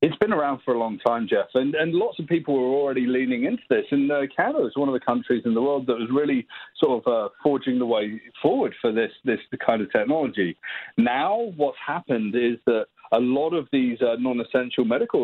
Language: English